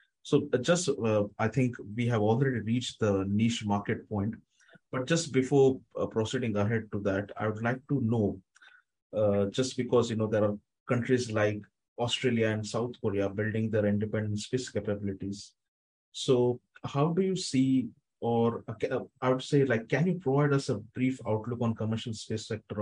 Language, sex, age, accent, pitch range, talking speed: English, male, 30-49, Indian, 105-125 Hz, 175 wpm